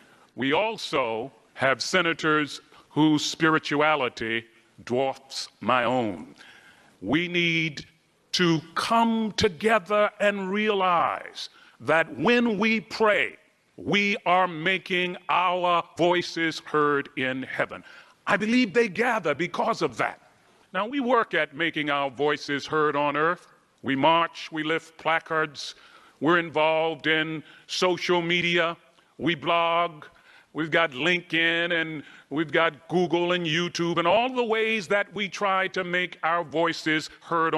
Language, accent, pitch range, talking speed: English, American, 160-210 Hz, 125 wpm